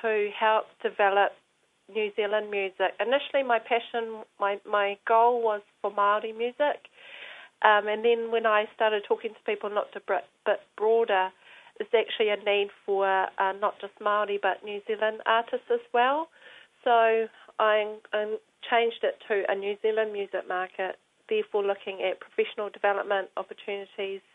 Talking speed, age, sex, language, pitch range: 150 wpm, 40-59, female, English, 195-225 Hz